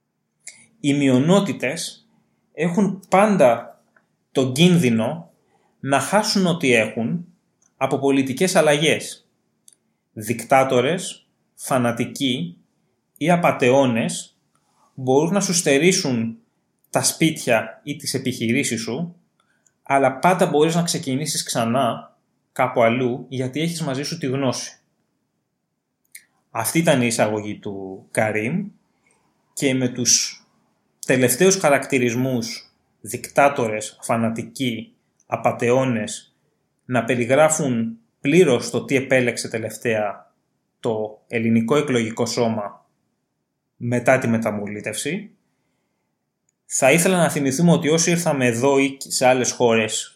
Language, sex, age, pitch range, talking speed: Greek, male, 20-39, 115-155 Hz, 100 wpm